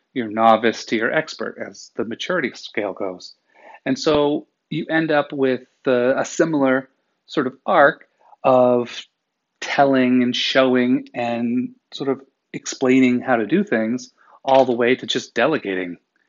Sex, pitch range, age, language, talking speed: male, 110-140 Hz, 30-49, English, 145 wpm